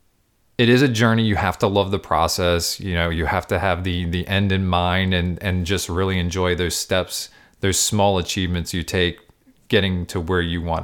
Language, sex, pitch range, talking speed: English, male, 85-105 Hz, 210 wpm